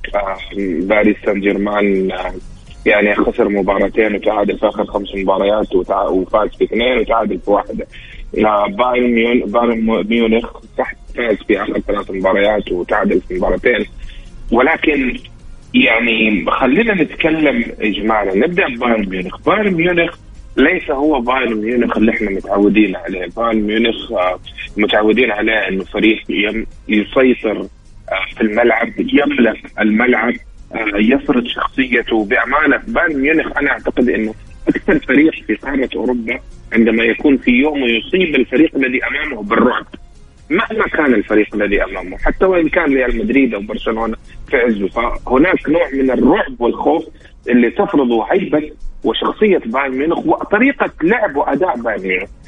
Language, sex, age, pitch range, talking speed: Arabic, male, 30-49, 105-130 Hz, 130 wpm